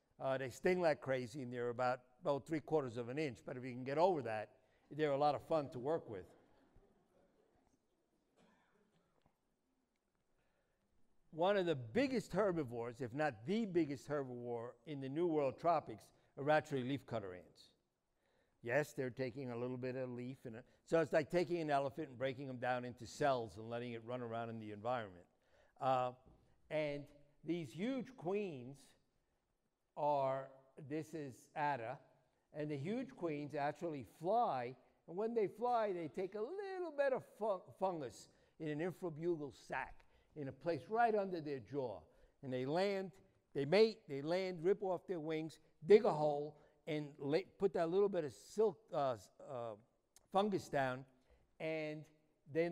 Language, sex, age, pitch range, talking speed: English, male, 60-79, 130-170 Hz, 165 wpm